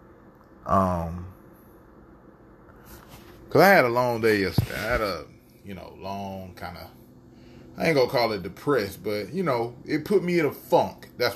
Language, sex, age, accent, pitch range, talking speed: English, male, 20-39, American, 90-110 Hz, 170 wpm